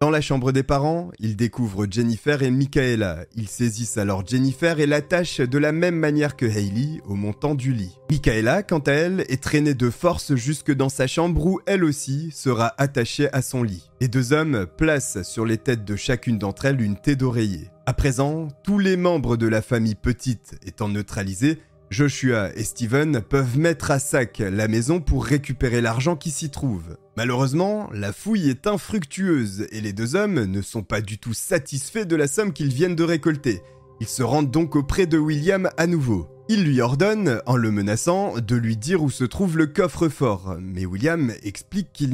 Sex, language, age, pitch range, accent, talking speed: male, French, 30-49, 115-155 Hz, French, 190 wpm